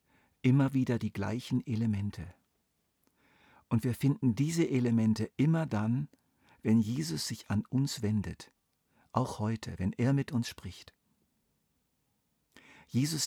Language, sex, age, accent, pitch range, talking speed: German, male, 50-69, German, 100-125 Hz, 120 wpm